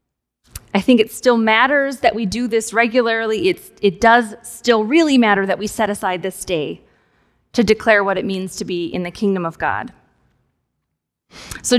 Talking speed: 175 wpm